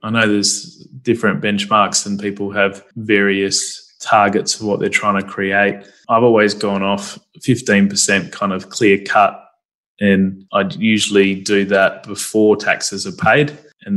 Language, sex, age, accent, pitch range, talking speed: English, male, 20-39, Australian, 95-105 Hz, 150 wpm